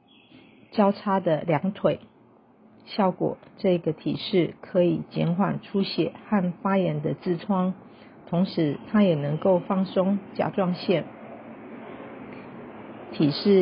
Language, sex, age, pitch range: Chinese, female, 40-59, 170-205 Hz